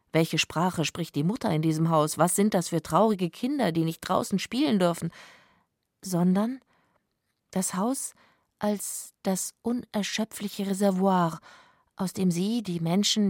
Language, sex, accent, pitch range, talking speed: German, female, German, 175-215 Hz, 140 wpm